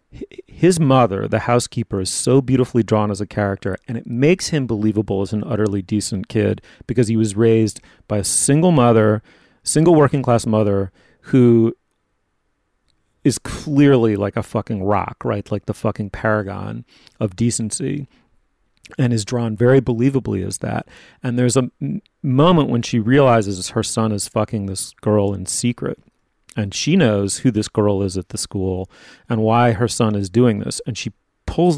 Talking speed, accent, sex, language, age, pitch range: 170 wpm, American, male, English, 40-59, 105-130 Hz